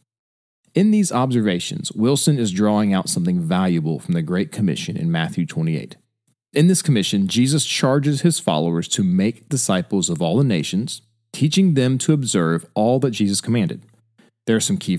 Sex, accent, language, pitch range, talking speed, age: male, American, English, 105-160 Hz, 170 wpm, 40-59